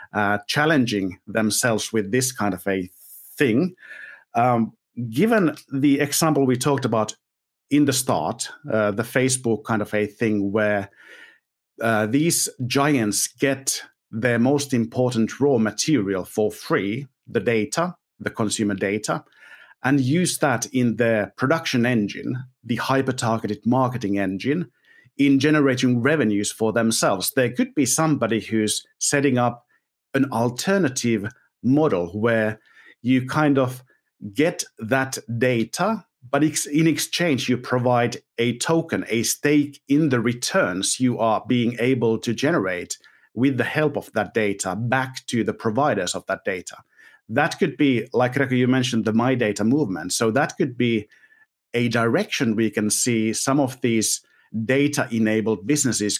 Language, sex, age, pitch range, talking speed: English, male, 50-69, 110-140 Hz, 140 wpm